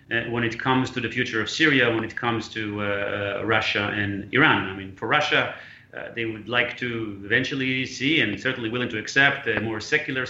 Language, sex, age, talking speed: English, male, 30-49, 215 wpm